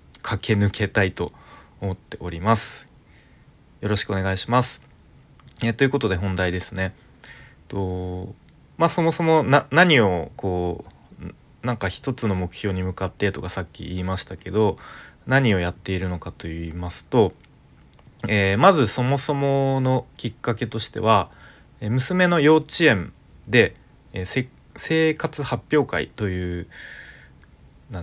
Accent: native